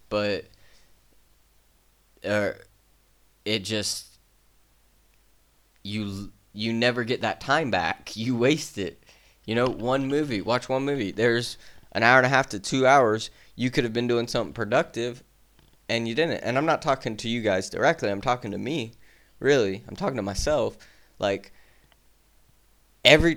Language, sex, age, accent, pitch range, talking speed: English, male, 20-39, American, 100-140 Hz, 150 wpm